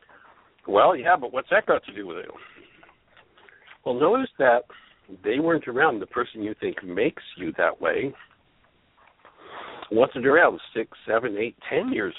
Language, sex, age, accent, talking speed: English, male, 60-79, American, 155 wpm